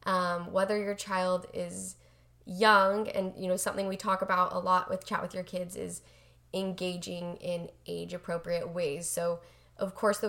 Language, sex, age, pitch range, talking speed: English, female, 10-29, 170-195 Hz, 170 wpm